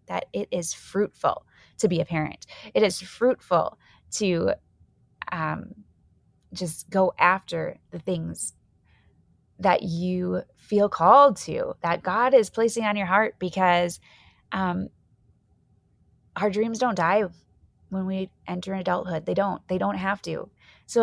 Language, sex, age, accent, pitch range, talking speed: English, female, 20-39, American, 170-215 Hz, 135 wpm